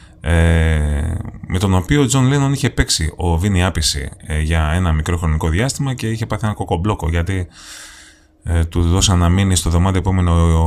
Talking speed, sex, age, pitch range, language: 180 wpm, male, 30-49, 80-115 Hz, Greek